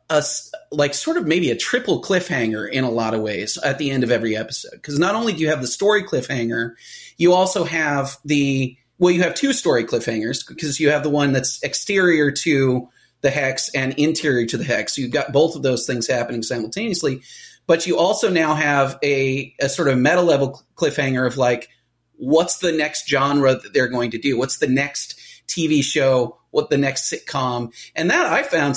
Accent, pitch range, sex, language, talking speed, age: American, 125-165 Hz, male, English, 200 wpm, 30-49